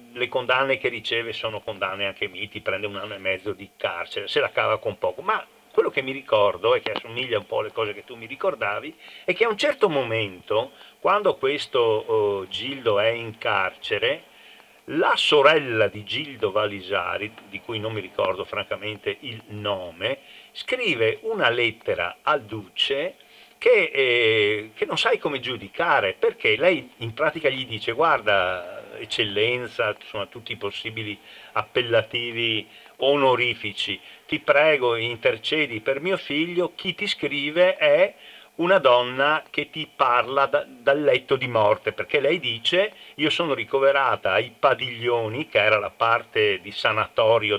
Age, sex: 50-69, male